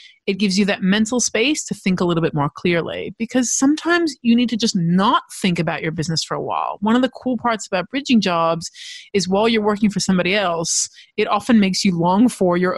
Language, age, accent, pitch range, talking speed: English, 30-49, American, 175-230 Hz, 230 wpm